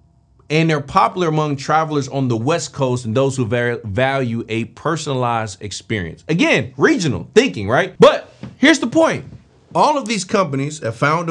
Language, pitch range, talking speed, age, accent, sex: English, 100-140 Hz, 160 wpm, 30-49, American, male